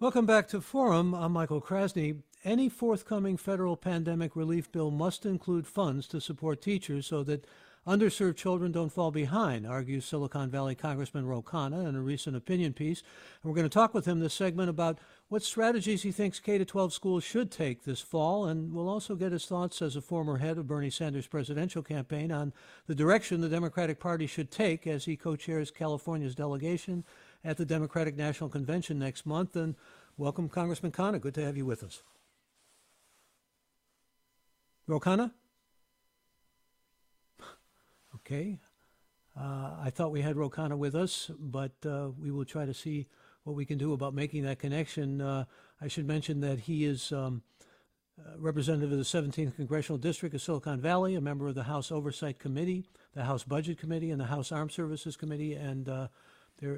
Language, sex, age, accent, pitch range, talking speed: English, male, 60-79, American, 145-175 Hz, 175 wpm